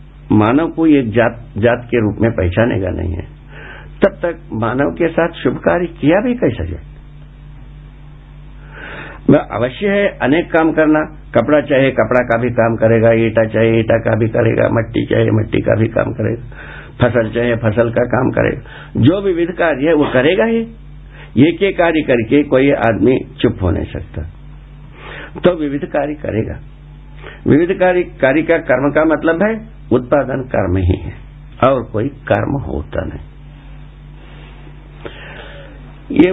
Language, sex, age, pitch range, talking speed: Hindi, male, 60-79, 115-150 Hz, 150 wpm